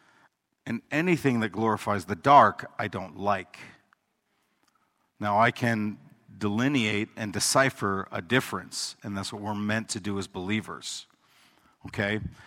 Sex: male